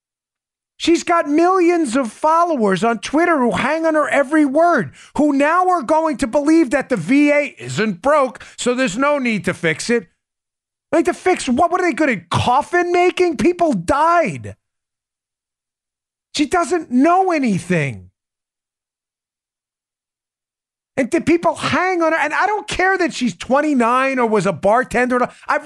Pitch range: 235-330 Hz